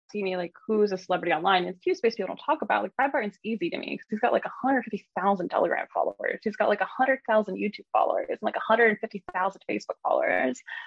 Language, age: English, 20-39